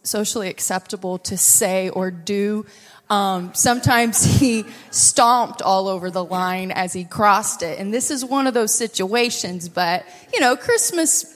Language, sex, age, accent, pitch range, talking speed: English, female, 20-39, American, 185-225 Hz, 155 wpm